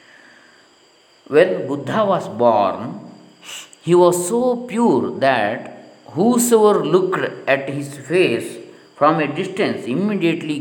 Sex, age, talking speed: male, 50-69, 100 wpm